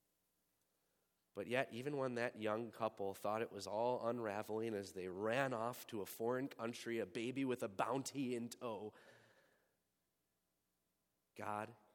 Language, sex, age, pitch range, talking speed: English, male, 30-49, 100-135 Hz, 140 wpm